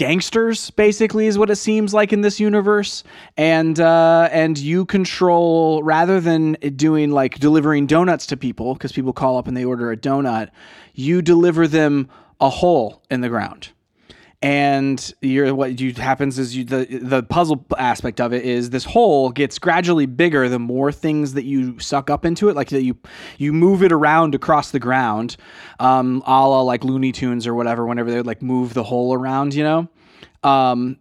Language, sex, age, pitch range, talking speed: English, male, 20-39, 130-165 Hz, 185 wpm